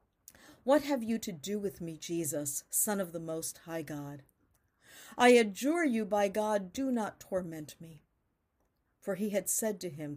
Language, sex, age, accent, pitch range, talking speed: English, female, 50-69, American, 165-245 Hz, 170 wpm